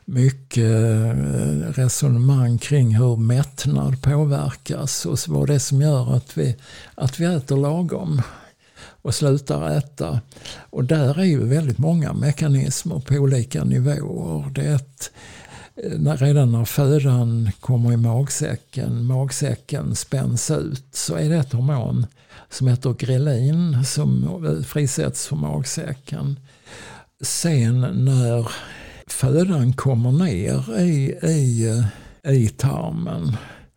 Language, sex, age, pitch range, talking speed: English, male, 60-79, 125-150 Hz, 115 wpm